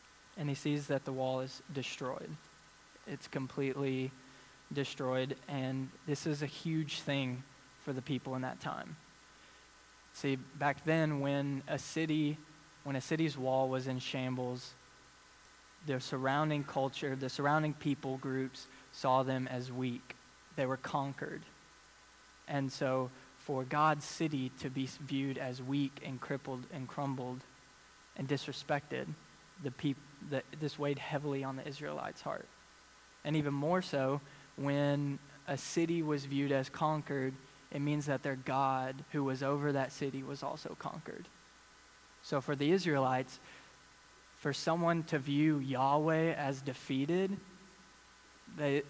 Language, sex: English, male